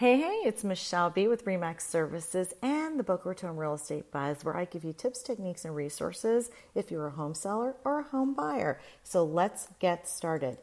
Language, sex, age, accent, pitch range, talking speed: English, female, 40-59, American, 150-195 Hz, 205 wpm